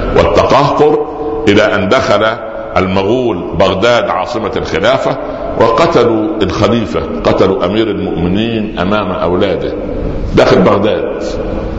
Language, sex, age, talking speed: Arabic, male, 60-79, 85 wpm